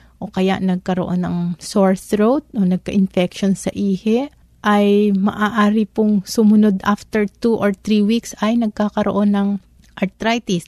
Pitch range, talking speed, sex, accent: 185-210 Hz, 130 wpm, female, native